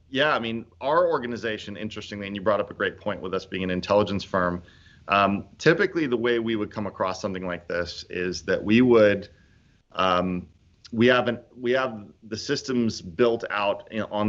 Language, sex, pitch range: English, male, 90-110 Hz